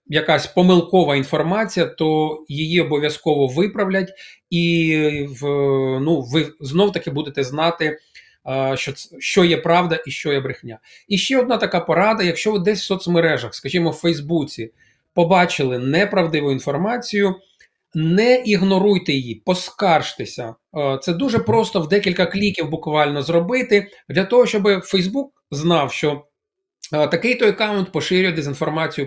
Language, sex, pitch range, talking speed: Ukrainian, male, 145-190 Hz, 125 wpm